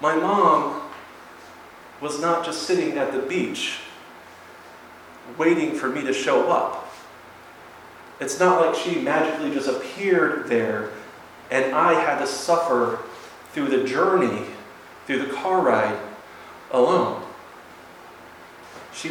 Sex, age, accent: male, 30-49, American